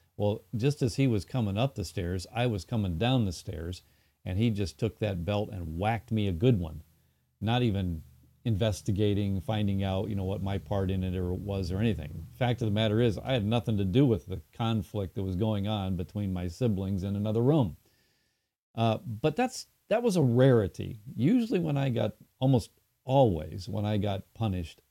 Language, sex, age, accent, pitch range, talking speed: English, male, 50-69, American, 95-120 Hz, 200 wpm